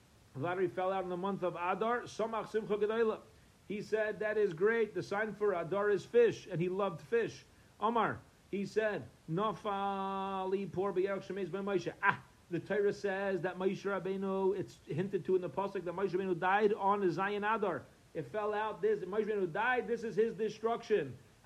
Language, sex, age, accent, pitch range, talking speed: English, male, 40-59, American, 140-200 Hz, 155 wpm